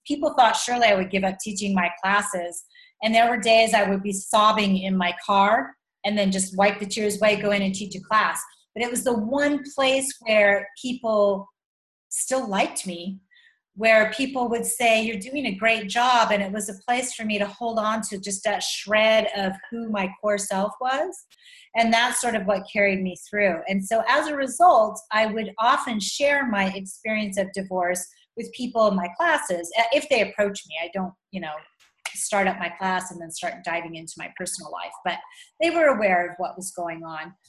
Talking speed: 205 wpm